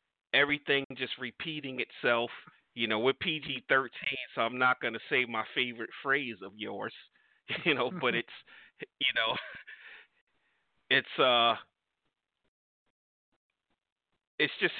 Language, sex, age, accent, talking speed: English, male, 40-59, American, 120 wpm